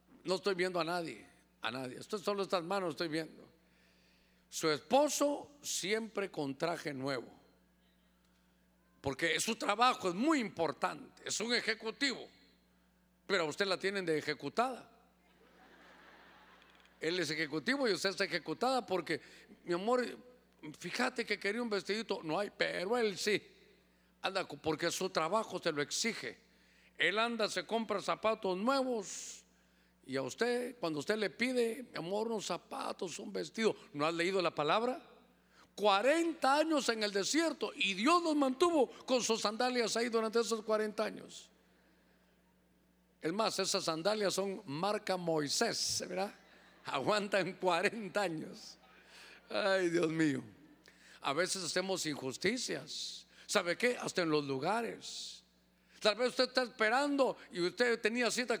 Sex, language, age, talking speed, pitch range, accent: male, Spanish, 50-69, 140 wpm, 160-230 Hz, Mexican